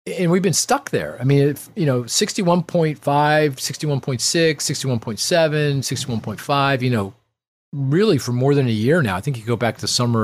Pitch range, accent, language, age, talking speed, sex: 105-140 Hz, American, English, 40-59, 180 wpm, male